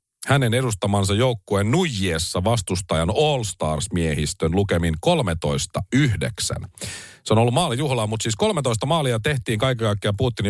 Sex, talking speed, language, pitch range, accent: male, 120 wpm, Finnish, 95-130 Hz, native